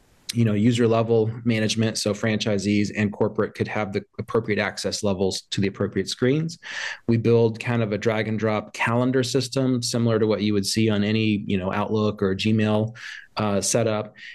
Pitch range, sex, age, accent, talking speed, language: 105-115 Hz, male, 30-49, American, 185 wpm, English